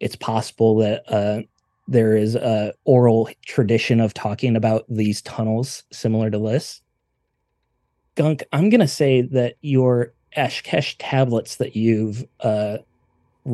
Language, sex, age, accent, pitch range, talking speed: English, male, 30-49, American, 115-135 Hz, 130 wpm